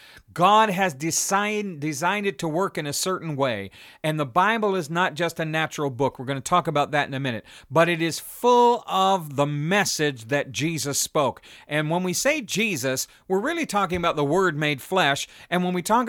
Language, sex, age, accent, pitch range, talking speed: English, male, 50-69, American, 145-195 Hz, 205 wpm